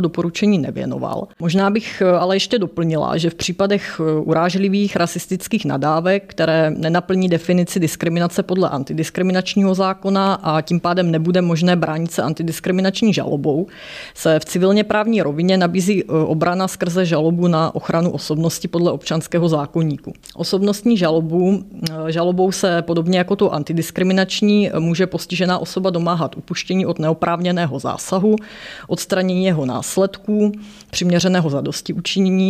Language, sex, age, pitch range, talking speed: Czech, female, 30-49, 165-190 Hz, 120 wpm